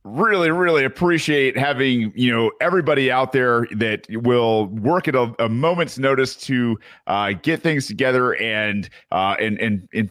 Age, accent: 40-59, American